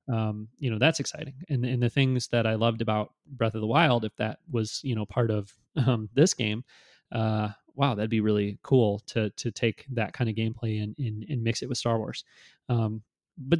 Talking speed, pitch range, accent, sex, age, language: 220 wpm, 115-130 Hz, American, male, 30-49, English